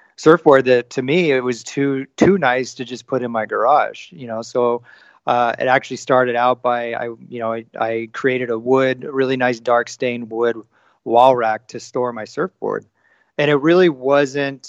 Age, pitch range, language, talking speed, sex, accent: 30-49, 120-135 Hz, English, 195 wpm, male, American